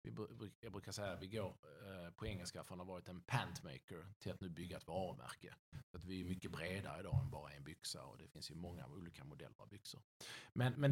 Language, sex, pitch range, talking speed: Swedish, male, 100-140 Hz, 230 wpm